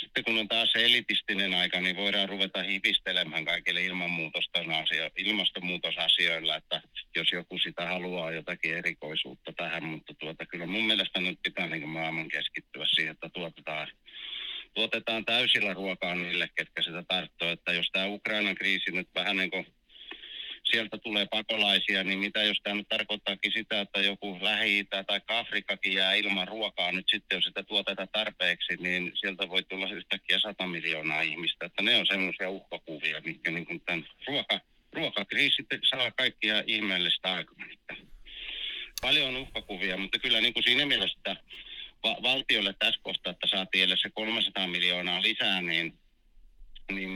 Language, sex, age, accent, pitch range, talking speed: Finnish, male, 30-49, native, 90-105 Hz, 145 wpm